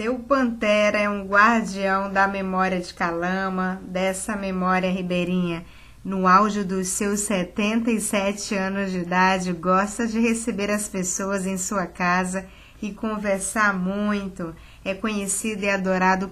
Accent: Brazilian